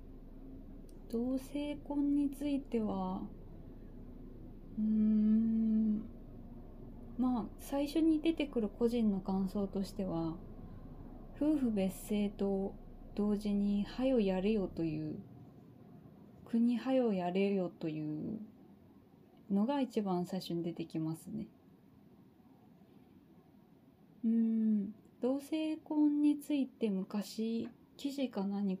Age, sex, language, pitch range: 20-39, female, Japanese, 195-265 Hz